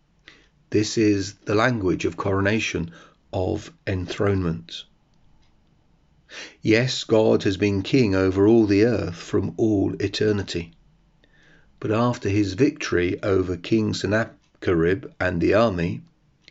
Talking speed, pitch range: 110 wpm, 95-120 Hz